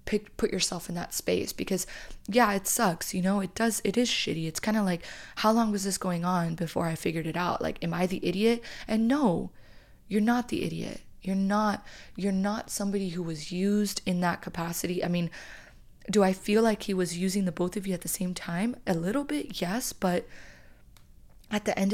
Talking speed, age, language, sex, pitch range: 215 wpm, 20-39, English, female, 180-210 Hz